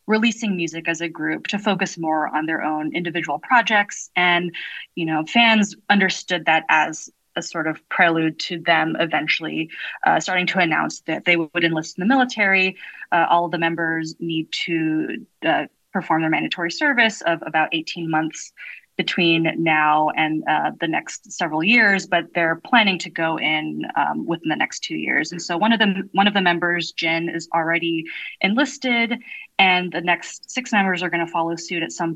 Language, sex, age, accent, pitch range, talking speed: English, female, 20-39, American, 160-190 Hz, 185 wpm